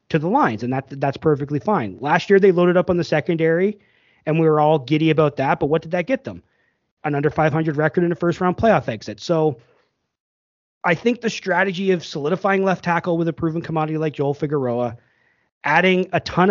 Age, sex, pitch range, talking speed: 30-49, male, 145-175 Hz, 205 wpm